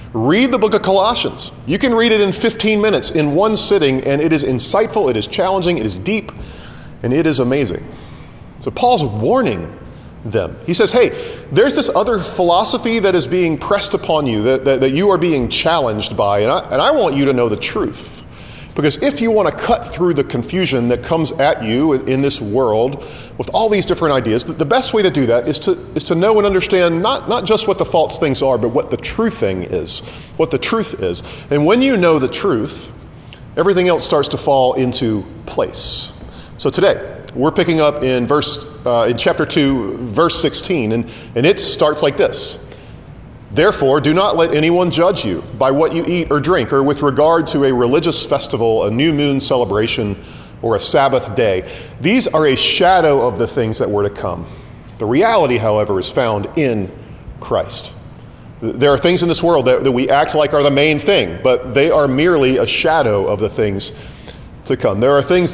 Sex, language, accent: male, English, American